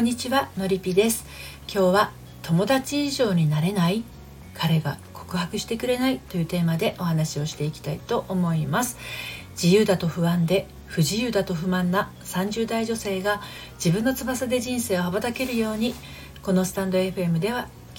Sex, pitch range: female, 165-210 Hz